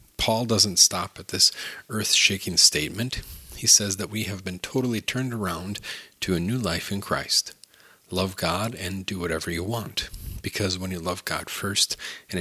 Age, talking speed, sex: 40-59, 175 wpm, male